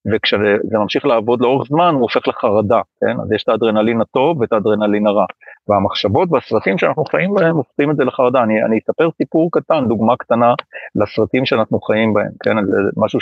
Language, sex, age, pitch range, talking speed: Hebrew, male, 40-59, 105-120 Hz, 175 wpm